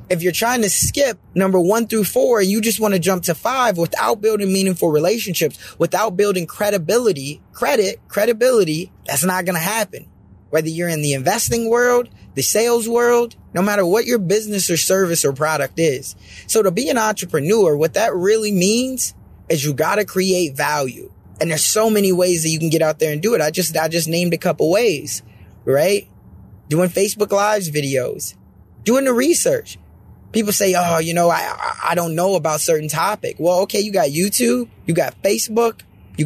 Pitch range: 160-220 Hz